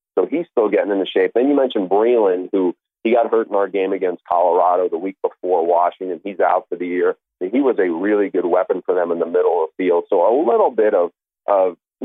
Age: 40-59